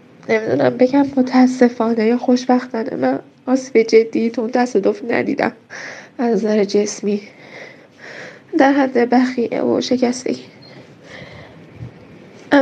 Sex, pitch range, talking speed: female, 250-330 Hz, 100 wpm